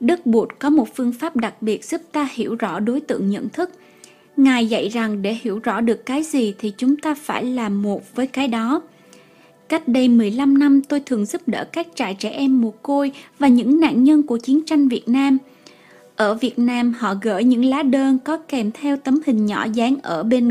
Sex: female